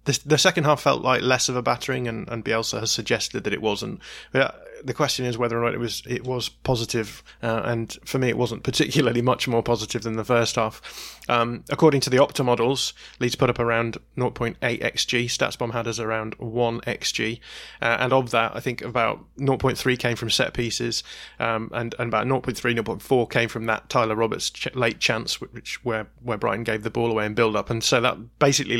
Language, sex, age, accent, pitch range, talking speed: English, male, 20-39, British, 115-130 Hz, 205 wpm